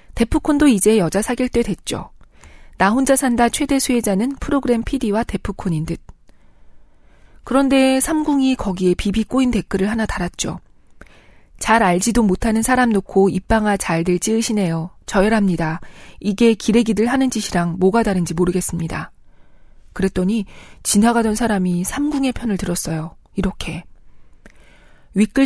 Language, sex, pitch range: Korean, female, 180-235 Hz